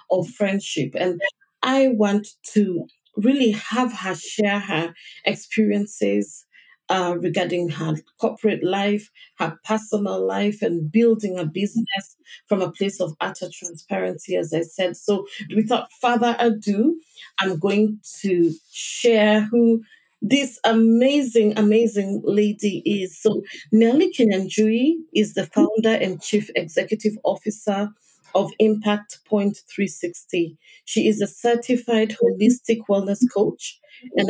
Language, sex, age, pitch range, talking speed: English, female, 40-59, 190-230 Hz, 120 wpm